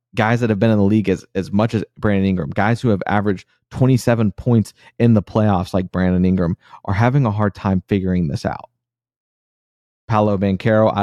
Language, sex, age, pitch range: English, male, 30-49, 95-115 Hz